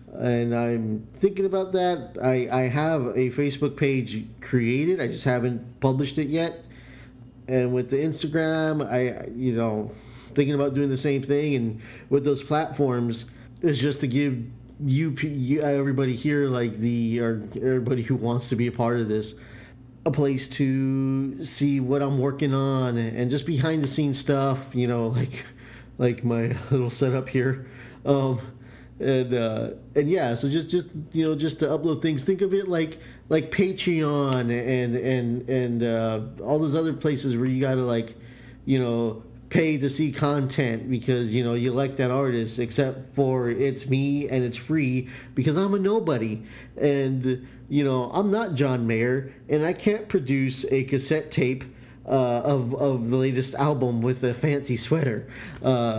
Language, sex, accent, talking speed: English, male, American, 170 wpm